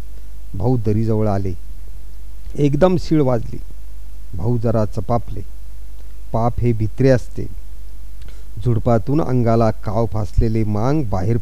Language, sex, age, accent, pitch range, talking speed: Marathi, male, 50-69, native, 95-140 Hz, 85 wpm